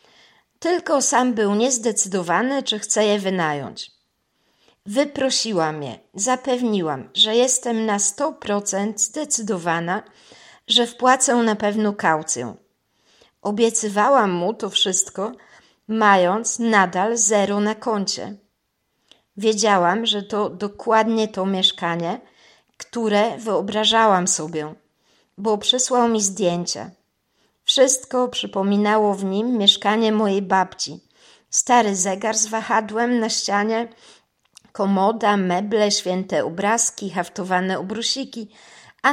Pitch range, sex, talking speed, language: 190-235 Hz, female, 95 wpm, Polish